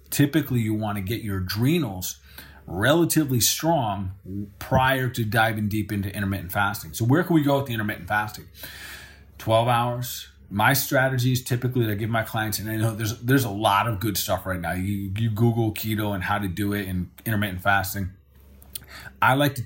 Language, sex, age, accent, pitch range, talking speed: English, male, 30-49, American, 100-140 Hz, 190 wpm